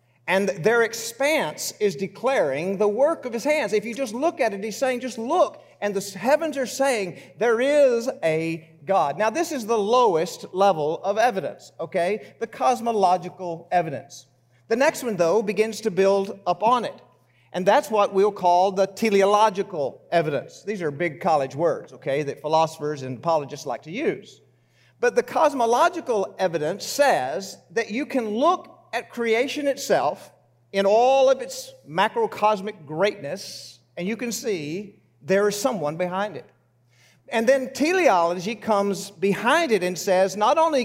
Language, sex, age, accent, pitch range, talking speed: English, male, 50-69, American, 170-240 Hz, 160 wpm